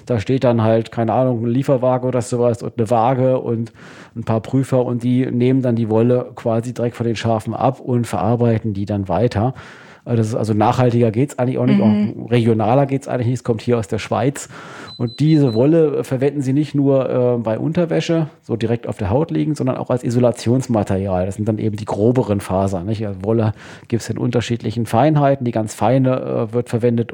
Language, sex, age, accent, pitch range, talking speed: German, male, 40-59, German, 115-135 Hz, 210 wpm